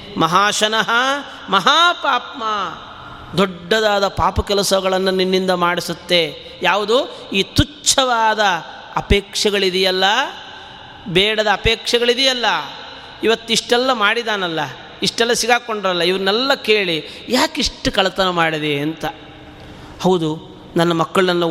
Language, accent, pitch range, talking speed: Kannada, native, 175-240 Hz, 75 wpm